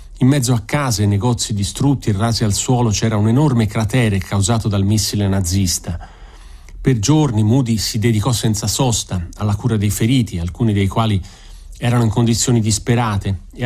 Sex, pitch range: male, 100-120 Hz